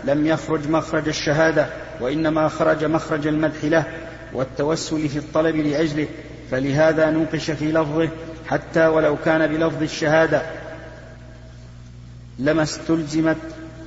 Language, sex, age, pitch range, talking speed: Arabic, male, 40-59, 150-160 Hz, 105 wpm